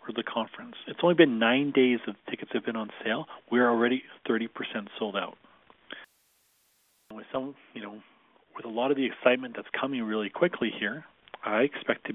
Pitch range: 110-135 Hz